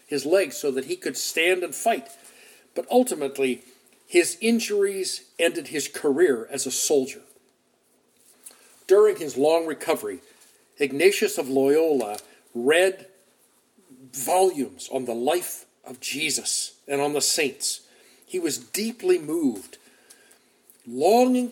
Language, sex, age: English, male, 50-69